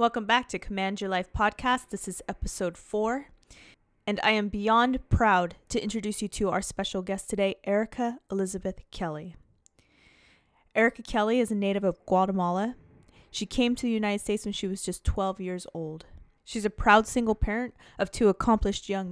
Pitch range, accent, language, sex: 185-220 Hz, American, English, female